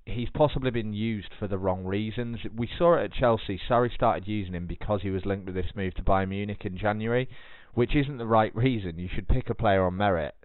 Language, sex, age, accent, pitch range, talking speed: English, male, 20-39, British, 90-110 Hz, 235 wpm